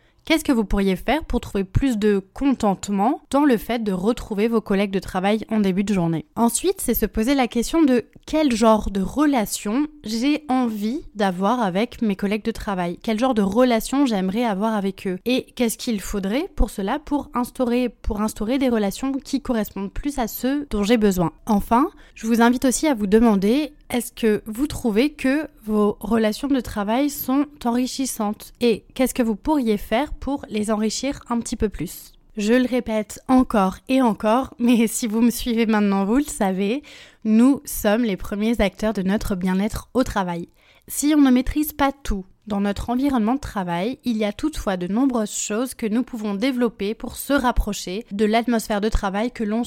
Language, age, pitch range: French, 20-39, 205-260 Hz